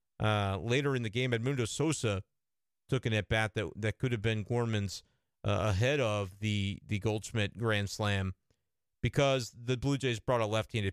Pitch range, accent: 105-125 Hz, American